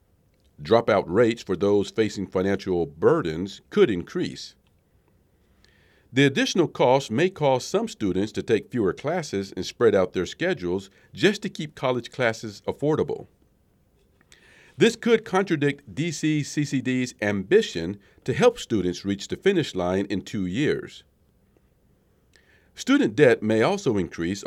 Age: 50-69